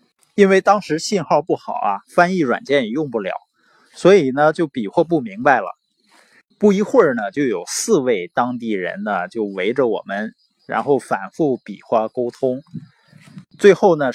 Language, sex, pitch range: Chinese, male, 125-200 Hz